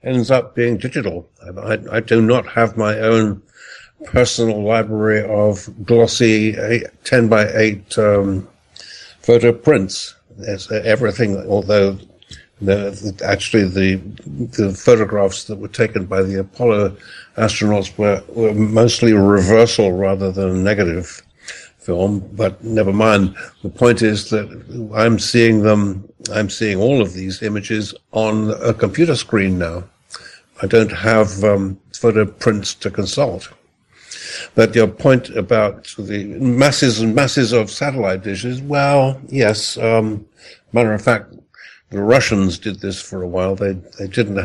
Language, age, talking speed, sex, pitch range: English, 60-79, 140 wpm, male, 100-115 Hz